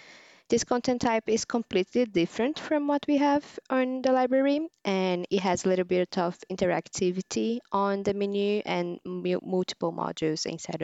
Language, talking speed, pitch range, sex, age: English, 155 wpm, 175-235 Hz, female, 20-39